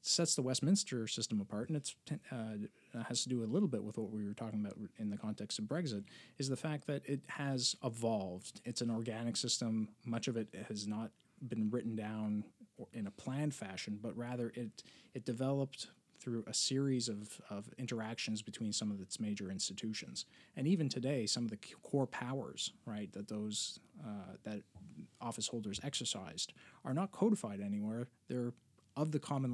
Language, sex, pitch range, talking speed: English, male, 105-135 Hz, 185 wpm